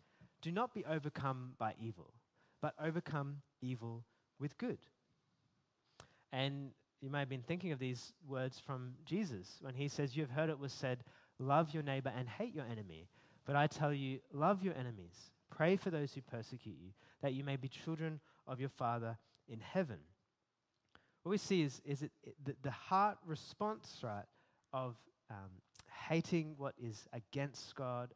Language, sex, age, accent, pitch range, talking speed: English, male, 20-39, Australian, 120-155 Hz, 170 wpm